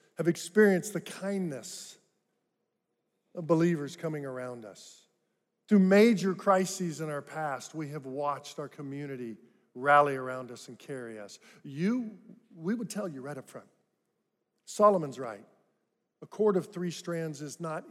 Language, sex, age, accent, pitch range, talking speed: English, male, 50-69, American, 135-190 Hz, 145 wpm